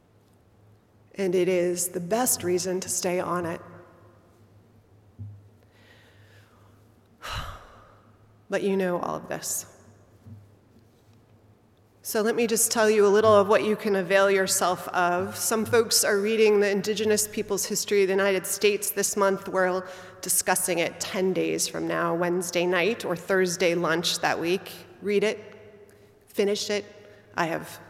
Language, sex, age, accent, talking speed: English, female, 30-49, American, 140 wpm